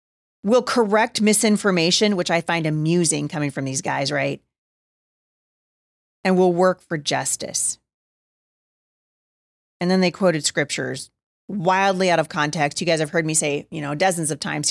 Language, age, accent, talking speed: English, 30-49, American, 150 wpm